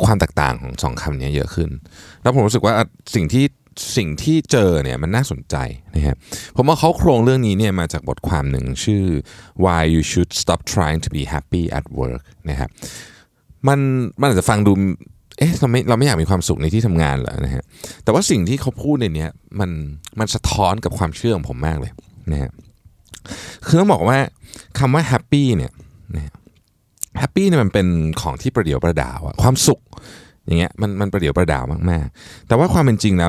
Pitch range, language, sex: 80-115 Hz, Thai, male